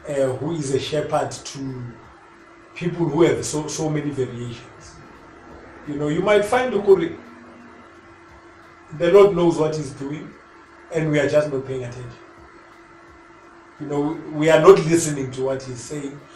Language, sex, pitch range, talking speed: English, male, 135-175 Hz, 150 wpm